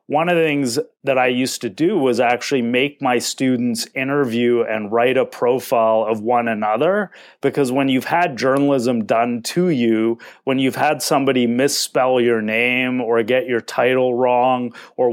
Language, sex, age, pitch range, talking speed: English, male, 30-49, 115-135 Hz, 170 wpm